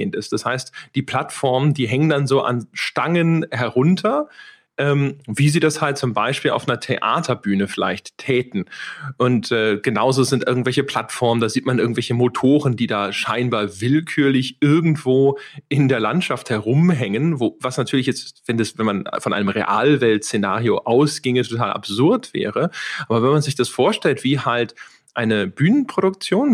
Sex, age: male, 40-59